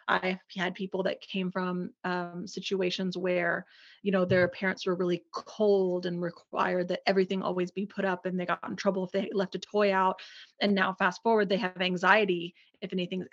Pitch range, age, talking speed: 180-205 Hz, 30-49, 200 wpm